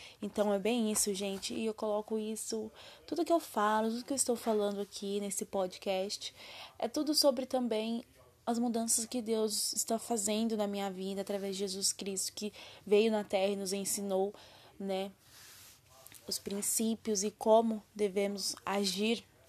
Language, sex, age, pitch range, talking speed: Portuguese, female, 20-39, 205-230 Hz, 160 wpm